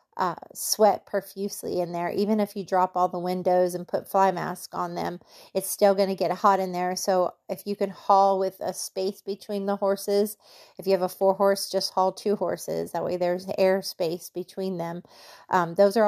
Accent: American